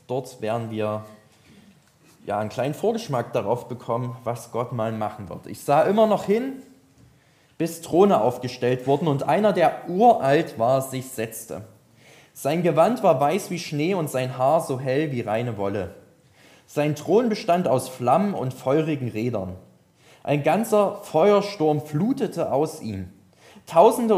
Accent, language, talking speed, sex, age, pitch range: German, German, 145 wpm, male, 20-39, 120-165 Hz